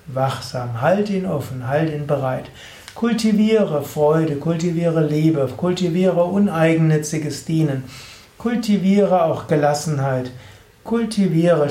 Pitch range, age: 130-175 Hz, 60-79